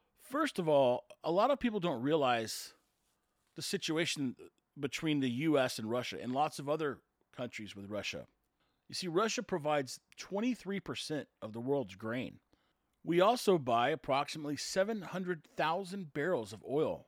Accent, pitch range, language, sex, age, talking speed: American, 120-175 Hz, English, male, 40-59, 140 wpm